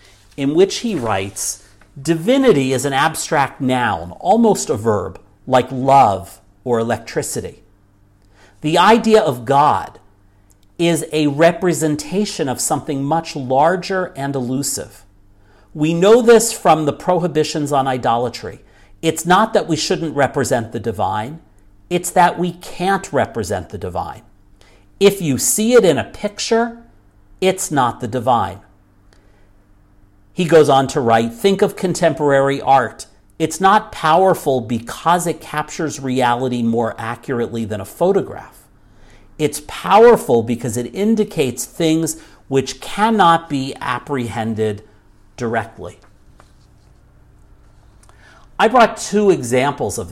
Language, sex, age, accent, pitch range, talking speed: English, male, 50-69, American, 105-160 Hz, 120 wpm